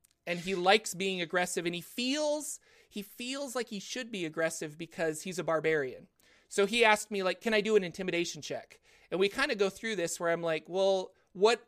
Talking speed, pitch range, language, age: 215 wpm, 160-205 Hz, English, 30-49